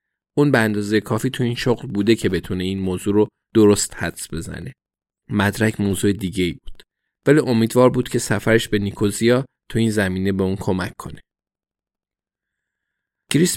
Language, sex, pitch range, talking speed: Persian, male, 100-125 Hz, 155 wpm